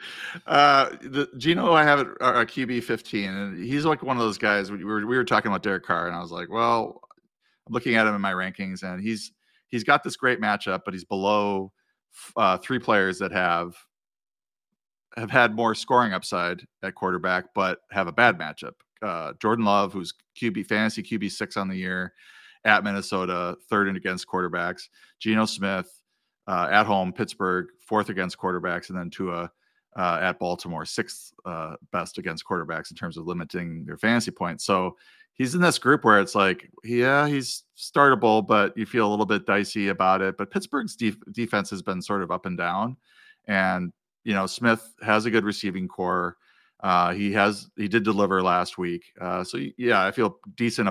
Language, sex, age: English, male, 40-59